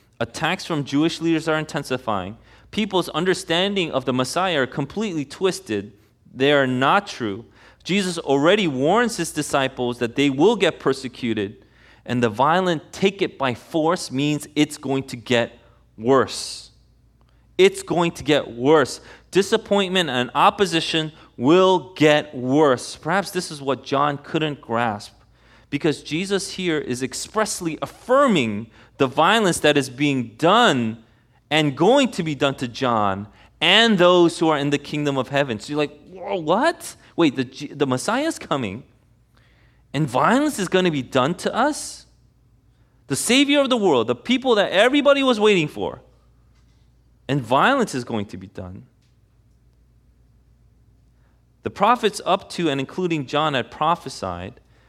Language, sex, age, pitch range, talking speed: English, male, 30-49, 120-175 Hz, 145 wpm